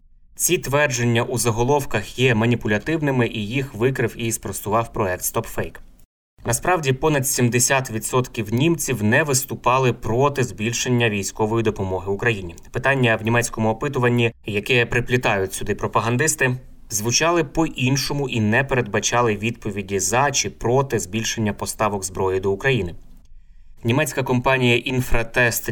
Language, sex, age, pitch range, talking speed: Ukrainian, male, 20-39, 105-125 Hz, 115 wpm